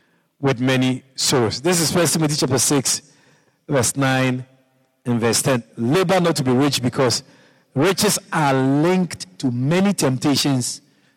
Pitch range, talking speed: 120-160 Hz, 140 wpm